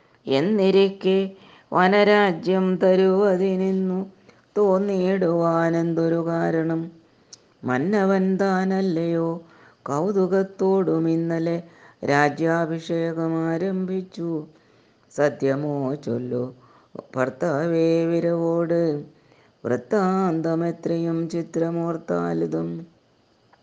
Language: Malayalam